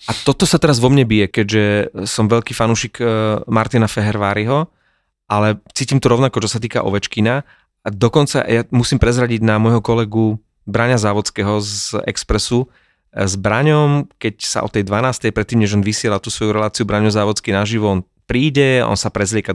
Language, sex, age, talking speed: Slovak, male, 30-49, 170 wpm